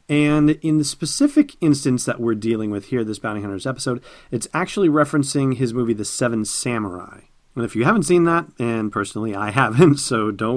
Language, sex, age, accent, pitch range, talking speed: English, male, 40-59, American, 105-135 Hz, 195 wpm